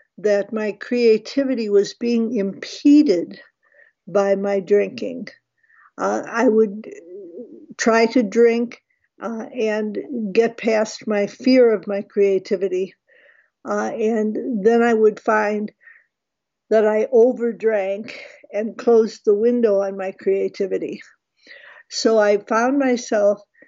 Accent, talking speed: American, 110 wpm